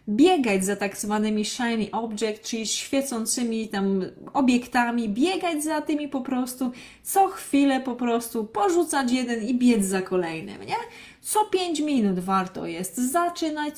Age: 20-39